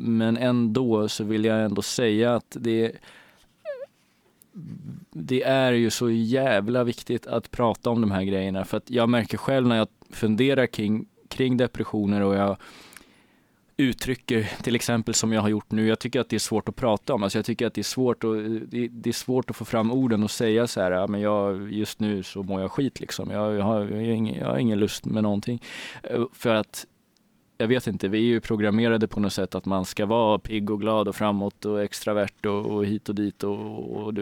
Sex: male